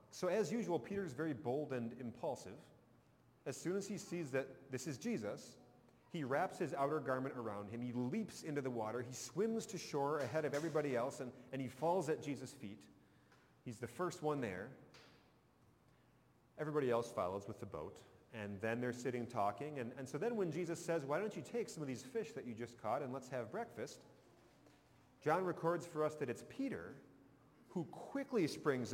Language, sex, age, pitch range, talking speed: English, male, 40-59, 125-170 Hz, 195 wpm